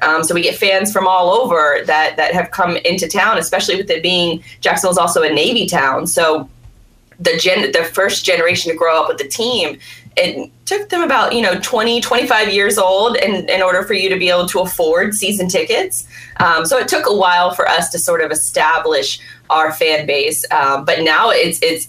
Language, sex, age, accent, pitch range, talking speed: English, female, 20-39, American, 160-200 Hz, 210 wpm